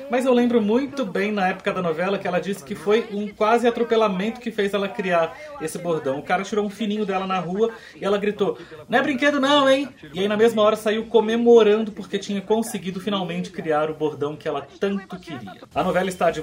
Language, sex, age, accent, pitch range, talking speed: Portuguese, male, 30-49, Brazilian, 160-210 Hz, 225 wpm